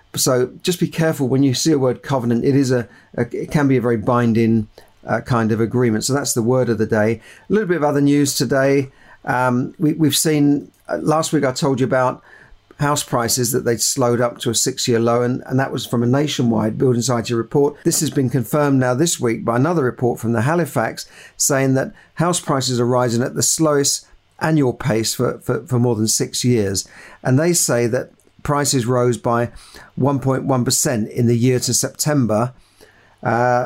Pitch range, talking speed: 120-145 Hz, 205 wpm